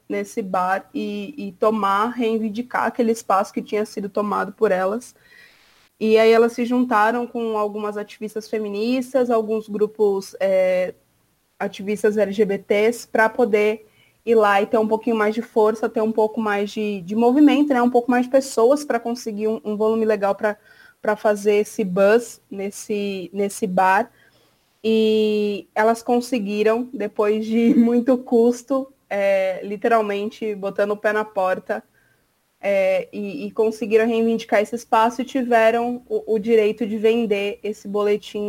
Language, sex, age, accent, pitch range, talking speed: Portuguese, female, 20-39, Brazilian, 205-230 Hz, 145 wpm